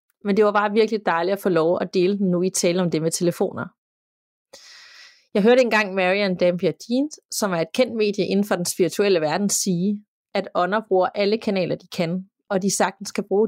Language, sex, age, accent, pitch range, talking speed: Danish, female, 30-49, native, 175-210 Hz, 215 wpm